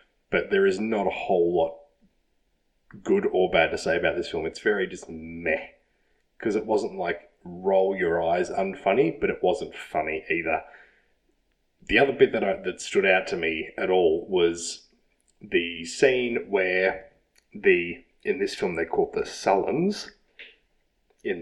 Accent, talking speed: Australian, 155 wpm